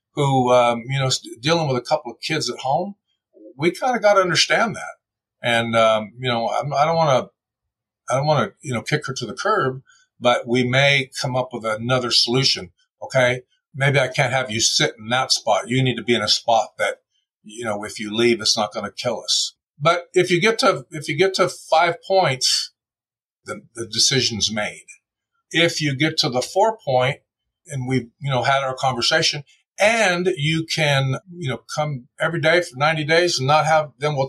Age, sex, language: 50-69, male, English